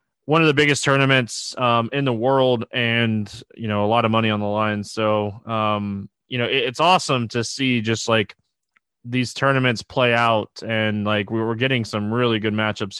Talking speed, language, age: 195 wpm, English, 20-39